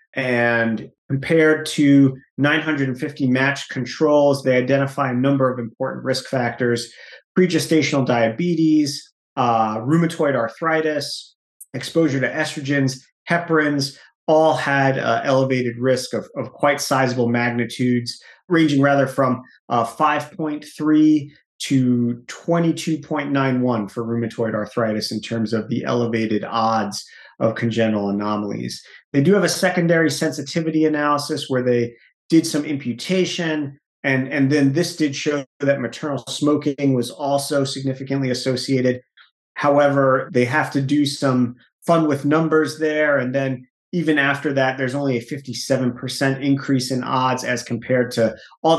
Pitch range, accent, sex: 120-150 Hz, American, male